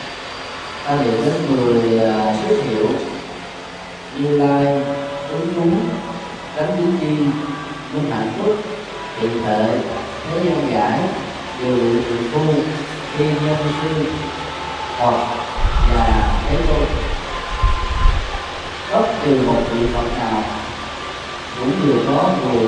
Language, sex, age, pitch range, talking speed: Vietnamese, male, 20-39, 120-160 Hz, 85 wpm